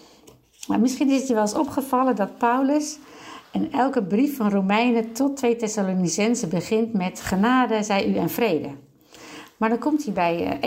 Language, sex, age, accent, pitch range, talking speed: Dutch, female, 60-79, Dutch, 185-250 Hz, 175 wpm